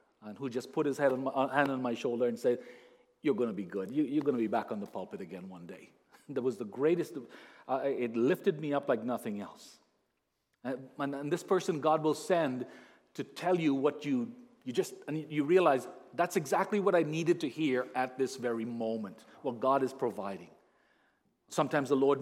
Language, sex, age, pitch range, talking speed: English, male, 40-59, 125-155 Hz, 220 wpm